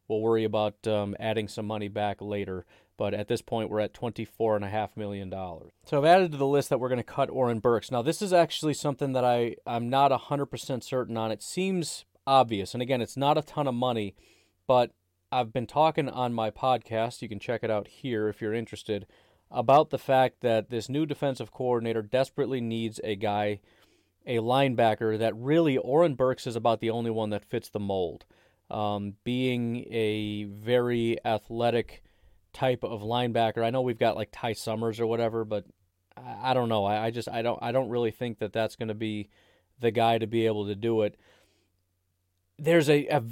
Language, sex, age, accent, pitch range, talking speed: English, male, 30-49, American, 105-125 Hz, 195 wpm